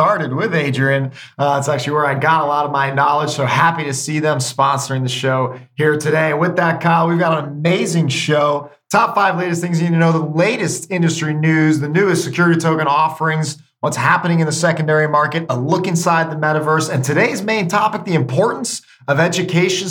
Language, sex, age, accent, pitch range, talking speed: English, male, 30-49, American, 145-180 Hz, 205 wpm